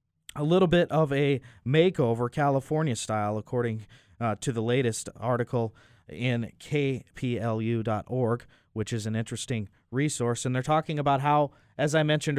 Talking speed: 135 wpm